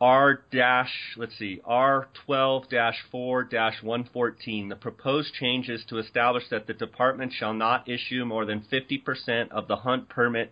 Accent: American